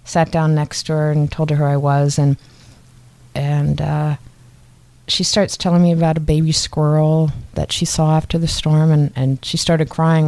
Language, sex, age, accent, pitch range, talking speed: English, female, 30-49, American, 130-160 Hz, 195 wpm